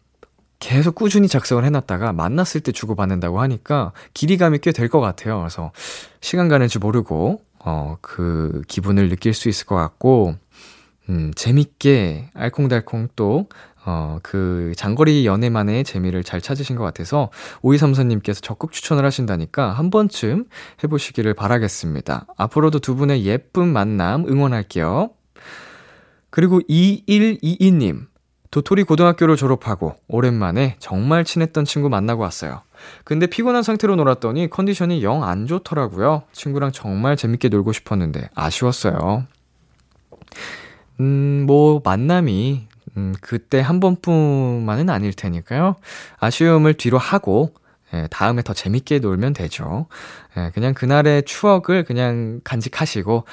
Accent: native